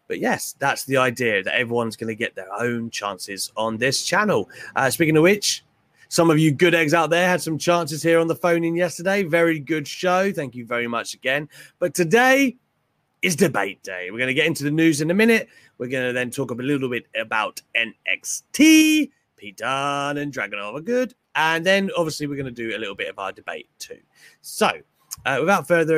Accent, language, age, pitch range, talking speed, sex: British, English, 30-49, 130-190 Hz, 215 wpm, male